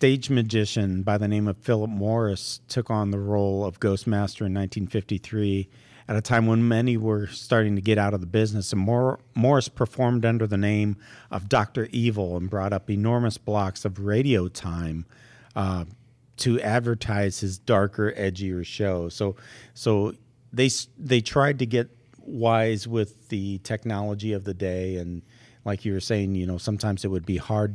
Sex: male